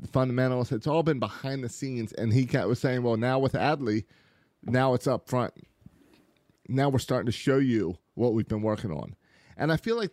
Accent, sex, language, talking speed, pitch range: American, male, English, 200 wpm, 120-145 Hz